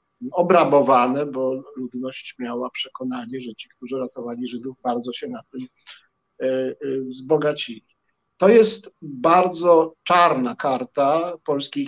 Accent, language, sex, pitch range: native, Polish, male, 130-175 Hz